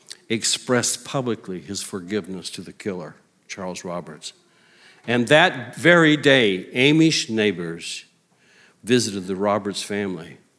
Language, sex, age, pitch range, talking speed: English, male, 60-79, 95-140 Hz, 110 wpm